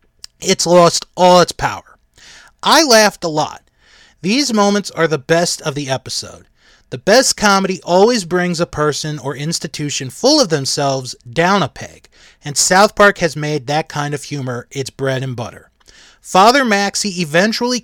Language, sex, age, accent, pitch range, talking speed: English, male, 30-49, American, 145-205 Hz, 160 wpm